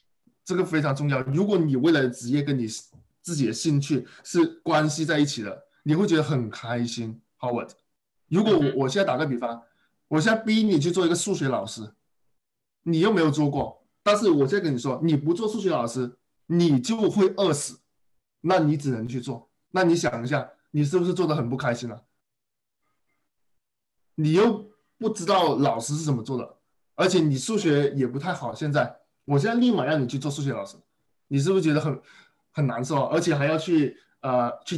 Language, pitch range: Chinese, 130-180 Hz